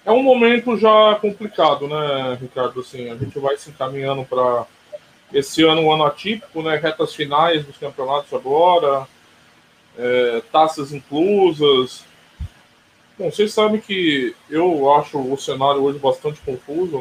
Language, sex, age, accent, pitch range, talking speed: Portuguese, male, 20-39, Brazilian, 120-165 Hz, 140 wpm